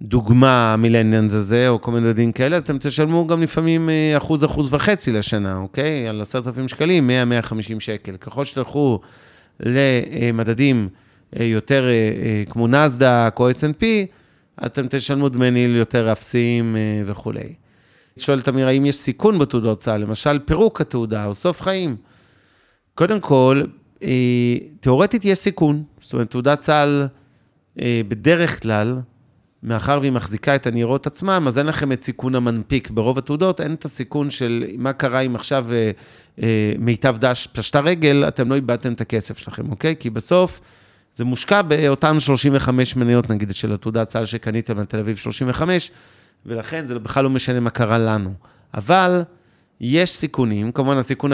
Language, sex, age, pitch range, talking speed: Hebrew, male, 30-49, 115-145 Hz, 150 wpm